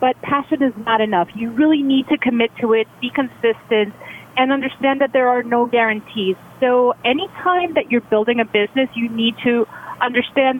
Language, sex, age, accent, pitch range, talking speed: English, female, 30-49, American, 215-250 Hz, 180 wpm